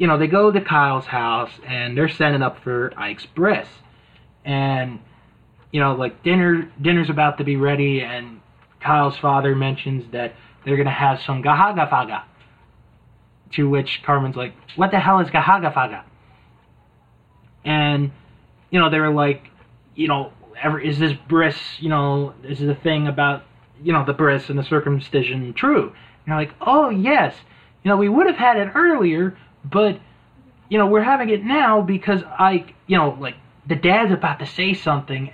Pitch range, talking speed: 130-165 Hz, 170 wpm